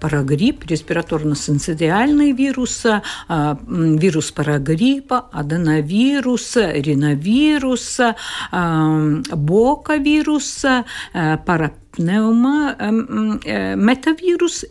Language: Russian